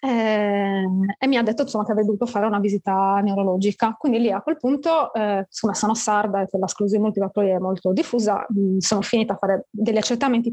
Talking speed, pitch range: 200 wpm, 205-250 Hz